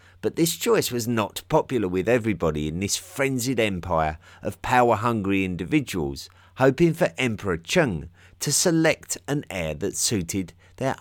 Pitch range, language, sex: 90-125 Hz, English, male